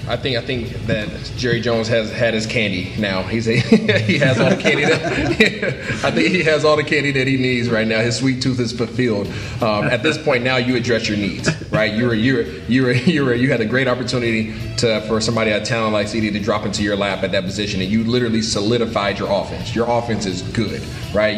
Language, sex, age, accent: English, male, 30-49, American